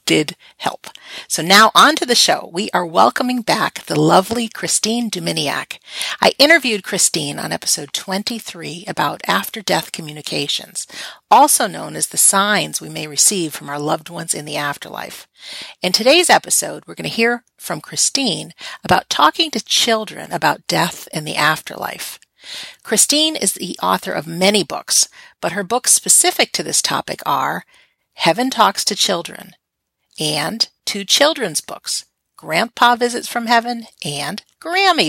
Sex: female